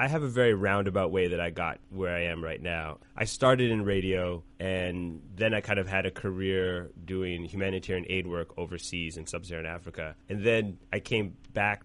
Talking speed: 200 wpm